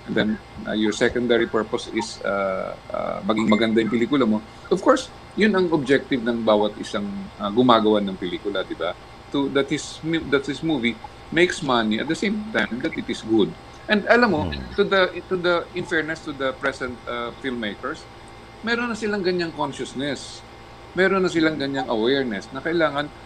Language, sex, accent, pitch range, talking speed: Filipino, male, native, 115-160 Hz, 175 wpm